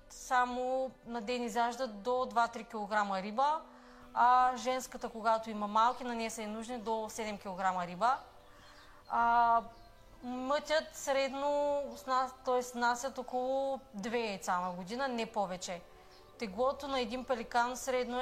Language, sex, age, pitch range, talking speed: Bulgarian, female, 30-49, 215-250 Hz, 130 wpm